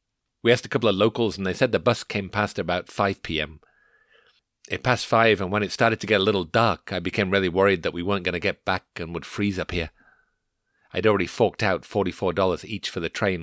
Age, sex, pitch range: 40-59, male, 90-115 Hz